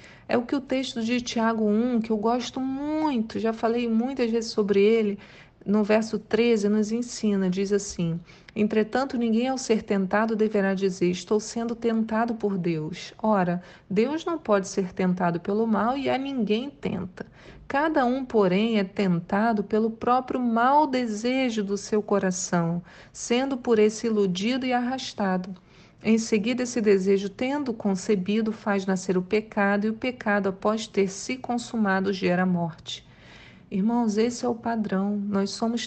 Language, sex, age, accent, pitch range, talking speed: Portuguese, female, 40-59, Brazilian, 200-240 Hz, 155 wpm